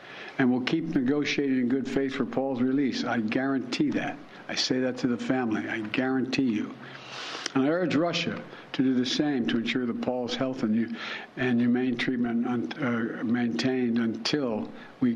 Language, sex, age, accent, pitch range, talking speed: English, male, 60-79, American, 115-140 Hz, 165 wpm